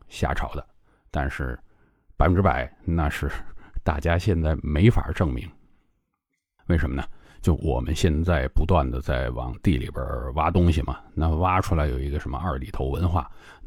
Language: Chinese